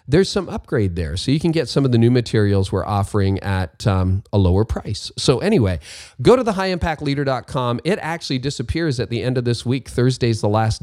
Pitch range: 105-145 Hz